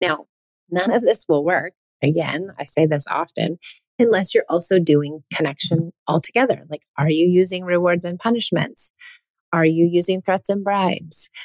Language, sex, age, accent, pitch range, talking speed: English, female, 30-49, American, 155-195 Hz, 155 wpm